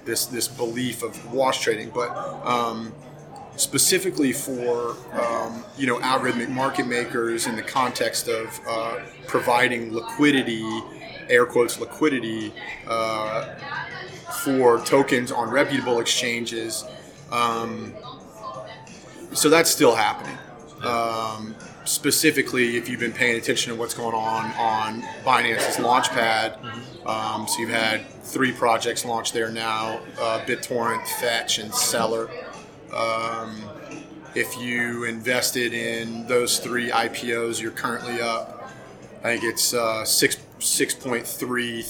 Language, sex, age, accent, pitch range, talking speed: English, male, 30-49, American, 115-125 Hz, 125 wpm